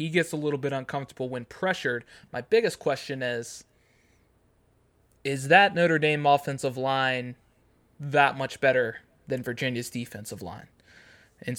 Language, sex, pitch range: English, male, 125-150 Hz